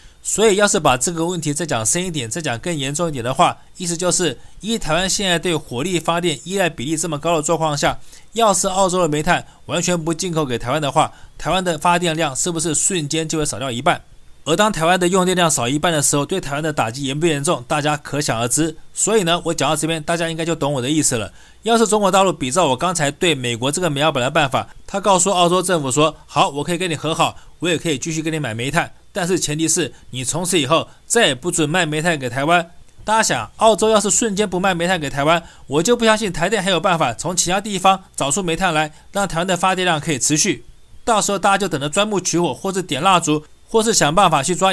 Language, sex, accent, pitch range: Chinese, male, native, 150-185 Hz